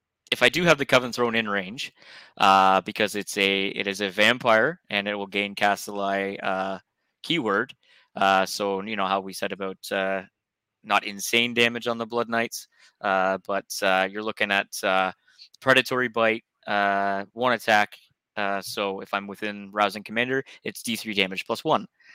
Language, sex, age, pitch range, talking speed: English, male, 20-39, 100-115 Hz, 175 wpm